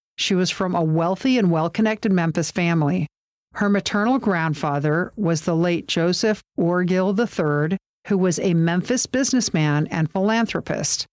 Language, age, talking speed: English, 50-69, 135 wpm